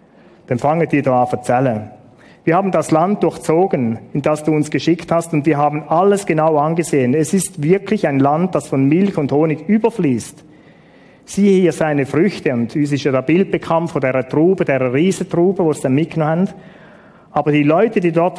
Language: German